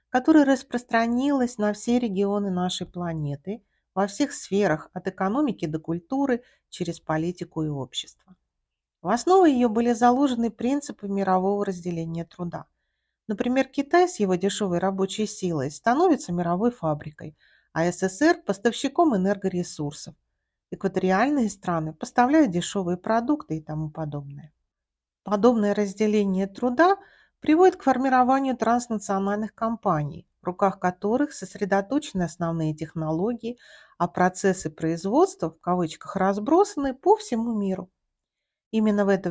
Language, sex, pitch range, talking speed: Russian, female, 175-245 Hz, 115 wpm